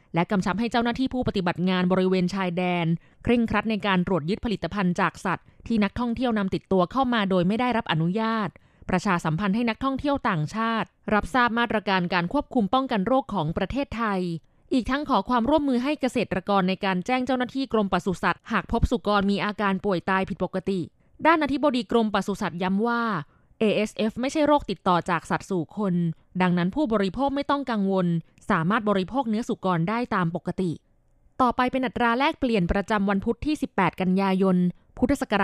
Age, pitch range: 20-39, 180-240 Hz